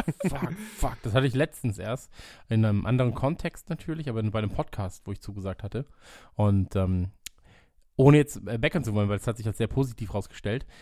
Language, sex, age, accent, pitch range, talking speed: German, male, 20-39, German, 105-140 Hz, 195 wpm